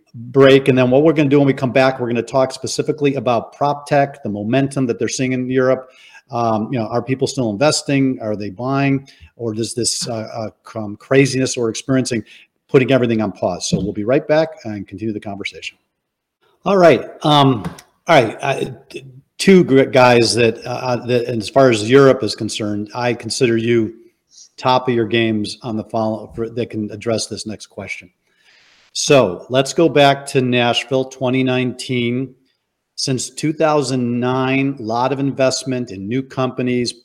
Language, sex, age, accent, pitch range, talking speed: English, male, 40-59, American, 115-135 Hz, 175 wpm